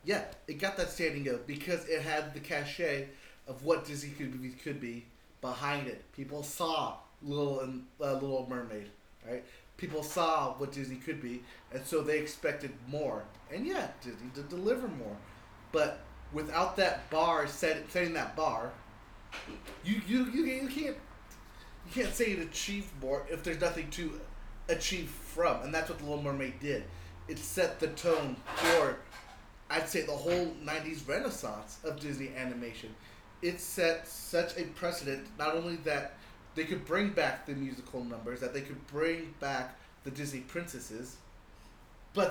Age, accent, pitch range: 30-49, American, 130-165 Hz